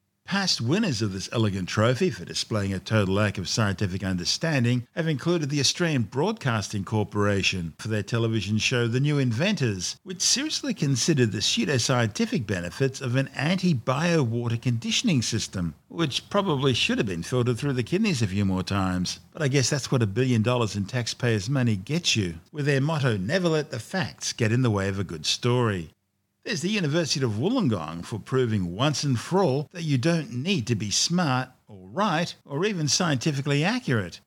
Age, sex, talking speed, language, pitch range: 50-69, male, 180 wpm, English, 105-145 Hz